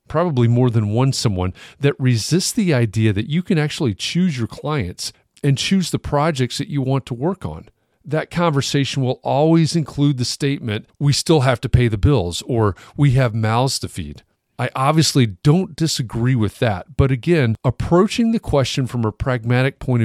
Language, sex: English, male